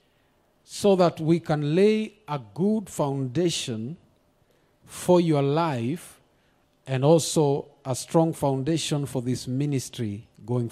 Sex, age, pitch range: male, 50-69, 125-160 Hz